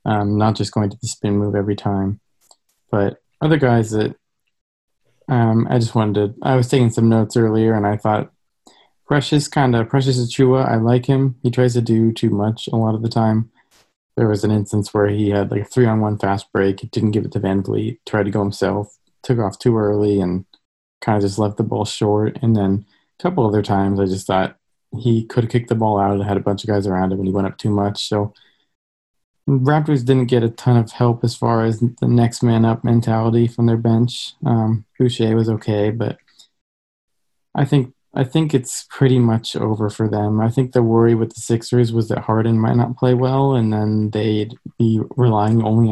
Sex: male